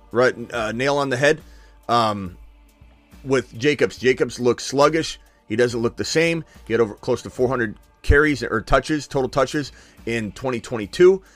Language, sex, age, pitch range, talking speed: English, male, 30-49, 105-145 Hz, 160 wpm